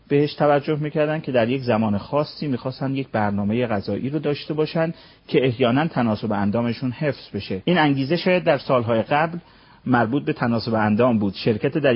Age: 40-59